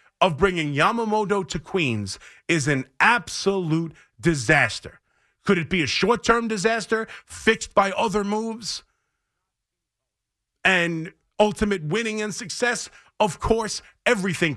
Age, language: 40-59, English